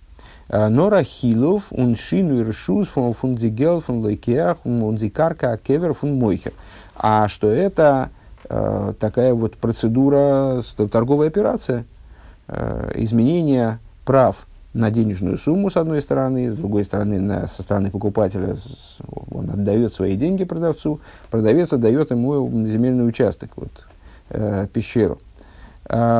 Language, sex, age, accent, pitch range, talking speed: Russian, male, 50-69, native, 105-140 Hz, 85 wpm